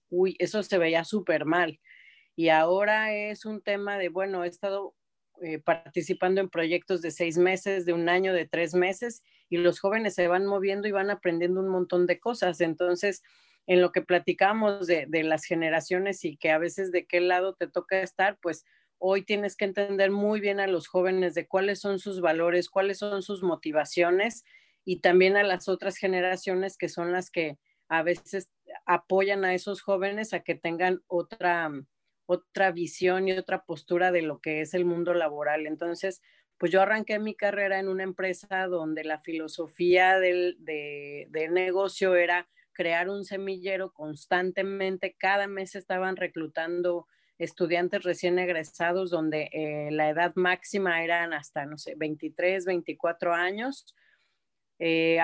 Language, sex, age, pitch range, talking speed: Spanish, female, 30-49, 170-195 Hz, 165 wpm